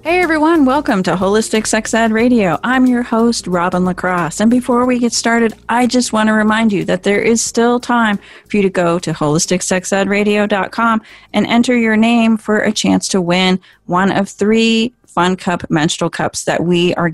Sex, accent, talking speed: female, American, 190 wpm